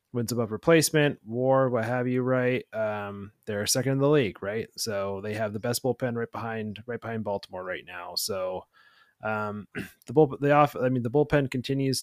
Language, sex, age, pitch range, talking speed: English, male, 20-39, 110-130 Hz, 195 wpm